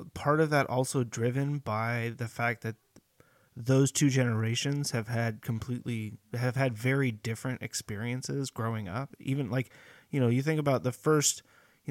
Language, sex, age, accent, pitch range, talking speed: English, male, 30-49, American, 110-130 Hz, 160 wpm